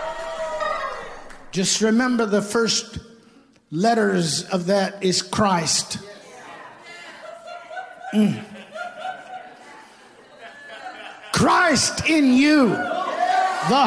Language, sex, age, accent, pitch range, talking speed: English, male, 50-69, American, 235-345 Hz, 60 wpm